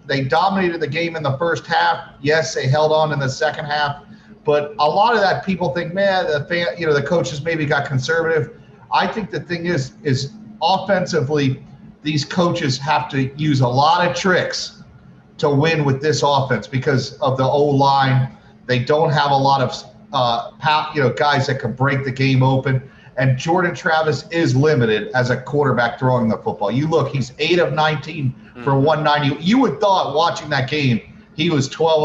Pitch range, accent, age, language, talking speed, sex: 135-175 Hz, American, 40-59, English, 195 wpm, male